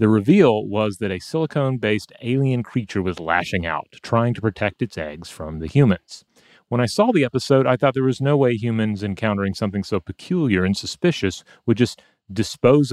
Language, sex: English, male